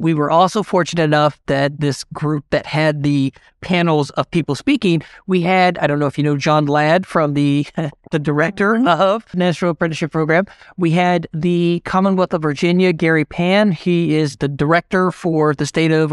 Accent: American